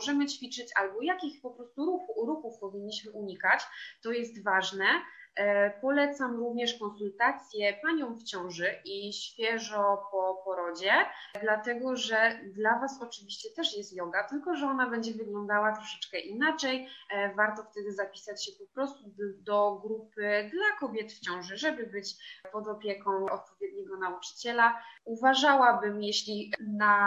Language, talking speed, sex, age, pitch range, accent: Polish, 130 wpm, female, 20-39, 200-240 Hz, native